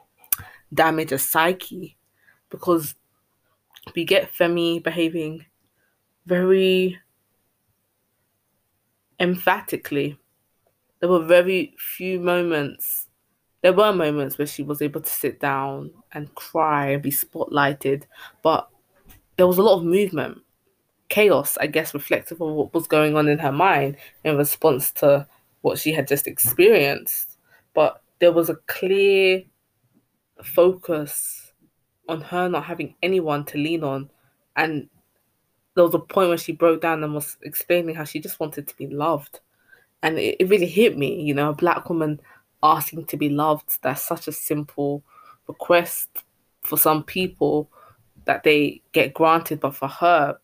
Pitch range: 140-175 Hz